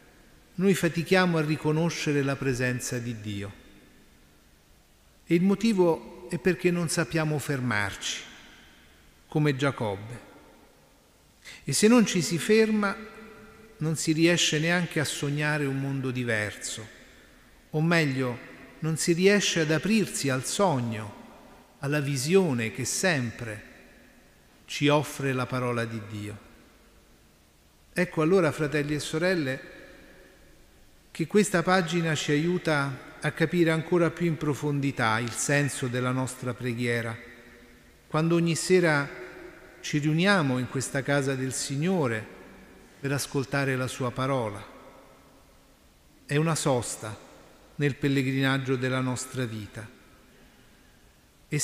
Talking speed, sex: 115 wpm, male